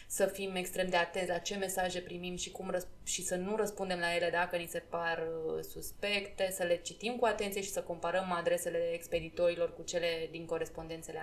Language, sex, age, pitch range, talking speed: Romanian, female, 20-39, 165-200 Hz, 200 wpm